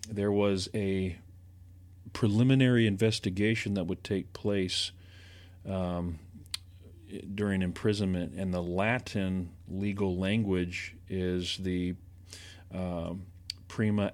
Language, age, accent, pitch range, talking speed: English, 40-59, American, 90-100 Hz, 90 wpm